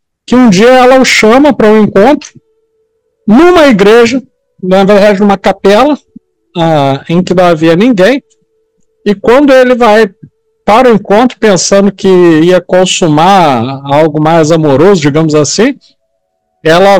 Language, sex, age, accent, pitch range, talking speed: Portuguese, male, 50-69, Brazilian, 170-275 Hz, 135 wpm